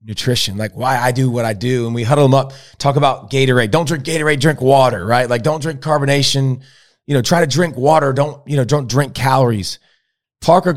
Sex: male